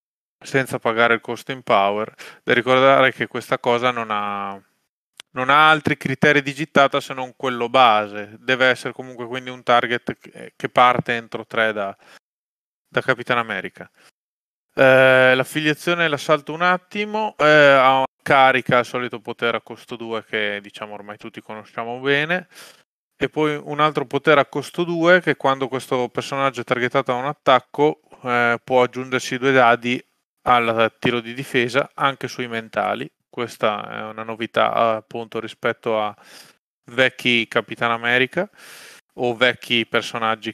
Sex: male